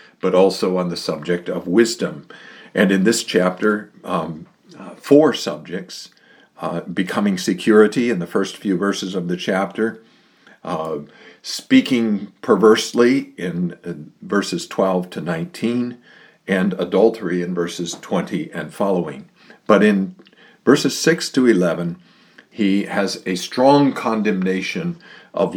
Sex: male